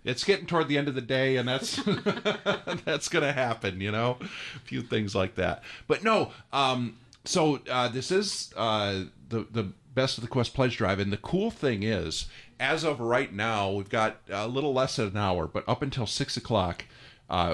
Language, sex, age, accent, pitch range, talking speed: English, male, 40-59, American, 95-125 Hz, 205 wpm